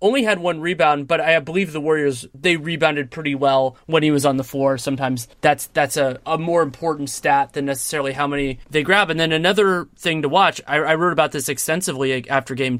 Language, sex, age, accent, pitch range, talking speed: English, male, 20-39, American, 135-165 Hz, 220 wpm